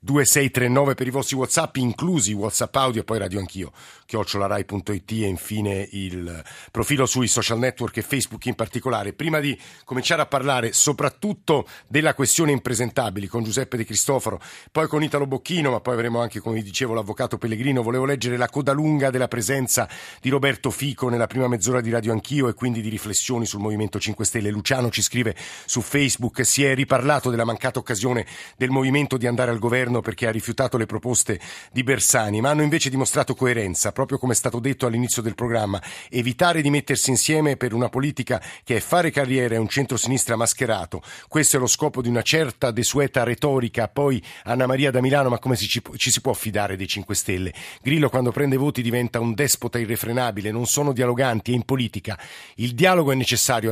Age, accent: 50-69, native